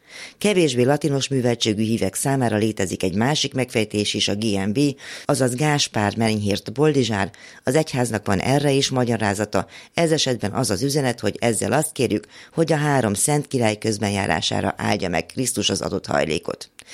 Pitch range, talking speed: 105-135 Hz, 150 wpm